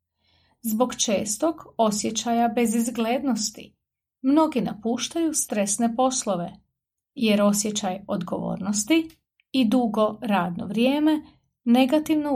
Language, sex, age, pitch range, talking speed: English, female, 30-49, 205-270 Hz, 80 wpm